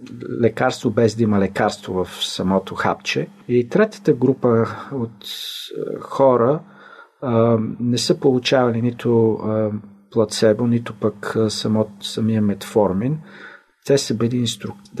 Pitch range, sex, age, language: 105-125 Hz, male, 50-69, Bulgarian